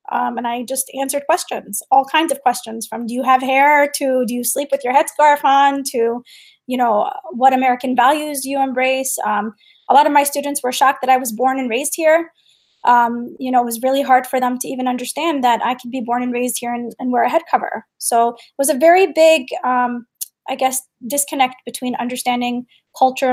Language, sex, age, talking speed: English, female, 20-39, 220 wpm